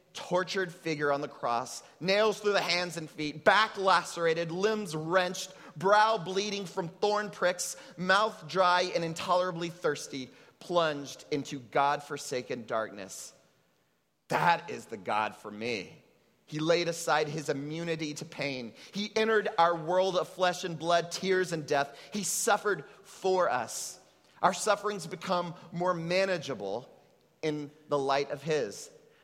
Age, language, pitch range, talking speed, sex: 30-49, English, 135-185 Hz, 140 wpm, male